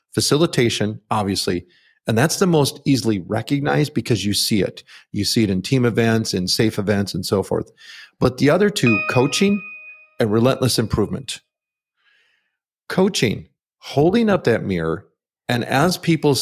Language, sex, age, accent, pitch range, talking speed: English, male, 40-59, American, 110-145 Hz, 145 wpm